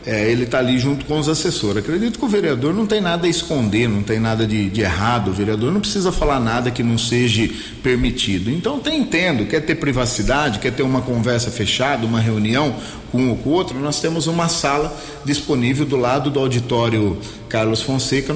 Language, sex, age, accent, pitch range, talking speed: Portuguese, male, 40-59, Brazilian, 120-165 Hz, 205 wpm